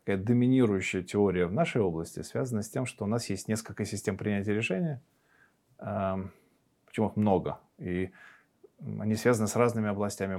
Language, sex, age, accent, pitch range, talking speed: Russian, male, 20-39, native, 90-115 Hz, 155 wpm